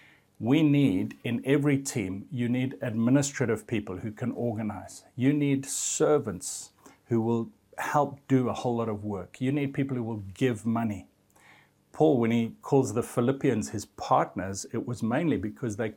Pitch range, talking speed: 110-130 Hz, 165 wpm